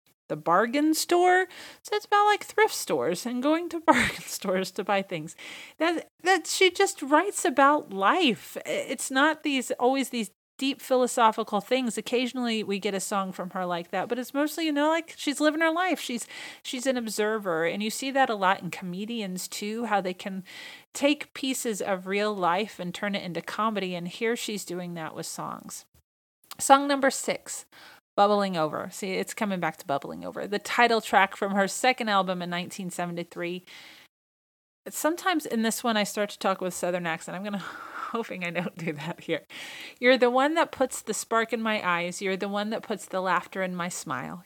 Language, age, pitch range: English, 40-59, 185-270 Hz